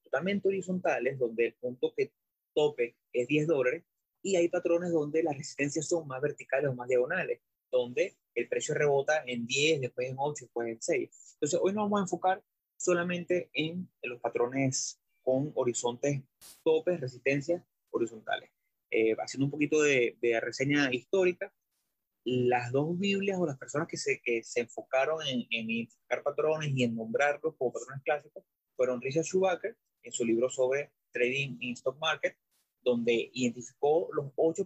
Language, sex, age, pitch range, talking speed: Spanish, male, 30-49, 125-160 Hz, 160 wpm